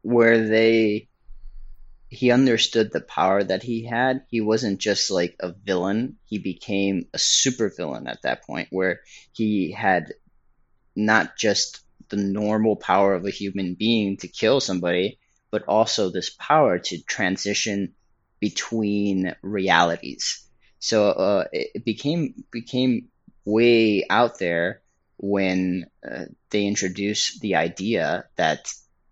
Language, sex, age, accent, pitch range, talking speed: English, male, 30-49, American, 95-110 Hz, 130 wpm